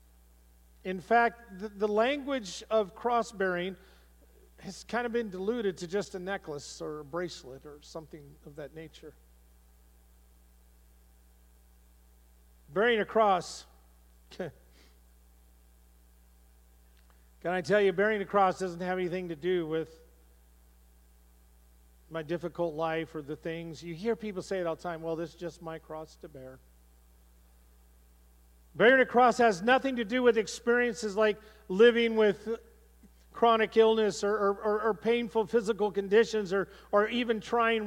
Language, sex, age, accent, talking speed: English, male, 50-69, American, 135 wpm